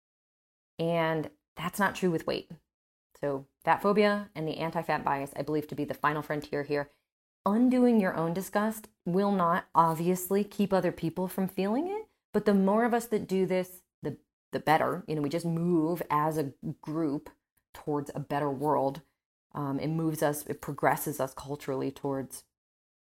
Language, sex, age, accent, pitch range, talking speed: English, female, 30-49, American, 150-215 Hz, 170 wpm